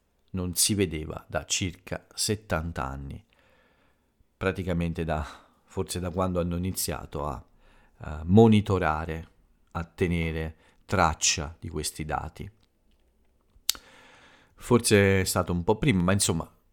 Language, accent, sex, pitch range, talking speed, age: Italian, native, male, 80-100 Hz, 110 wpm, 40-59